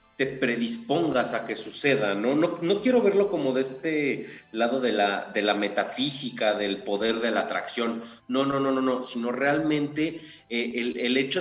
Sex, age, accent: male, 40-59, Mexican